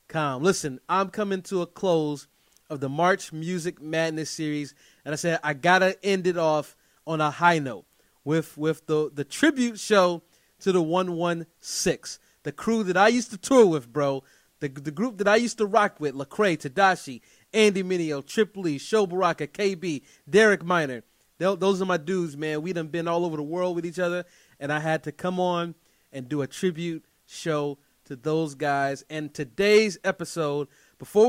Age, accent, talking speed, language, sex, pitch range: 30-49, American, 185 wpm, English, male, 150-185 Hz